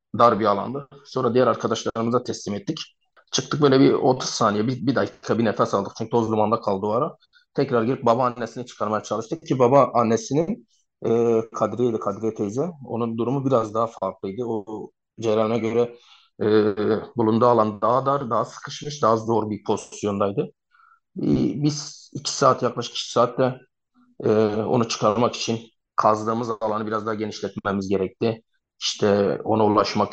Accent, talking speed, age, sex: native, 150 wpm, 30-49, male